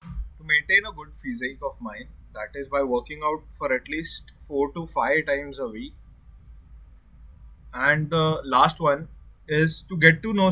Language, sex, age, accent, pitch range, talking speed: English, male, 20-39, Indian, 125-175 Hz, 165 wpm